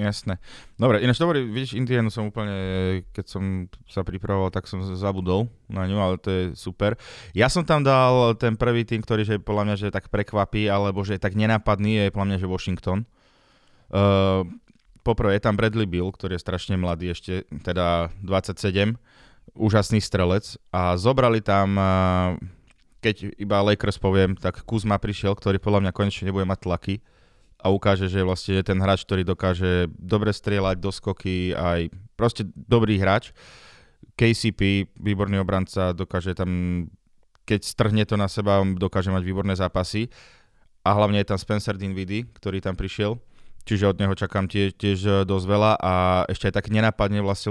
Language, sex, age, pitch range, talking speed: Slovak, male, 20-39, 95-105 Hz, 165 wpm